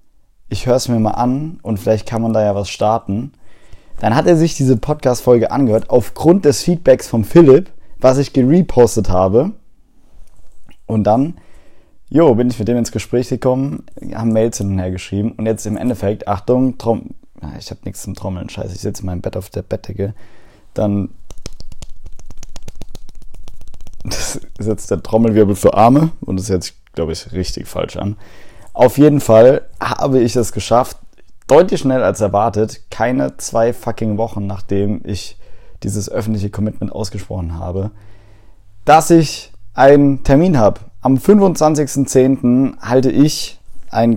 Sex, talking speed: male, 150 wpm